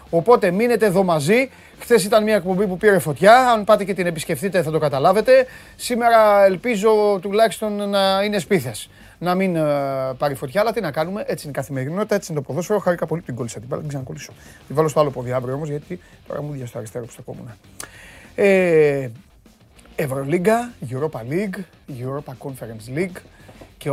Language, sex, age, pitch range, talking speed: Greek, male, 30-49, 140-200 Hz, 175 wpm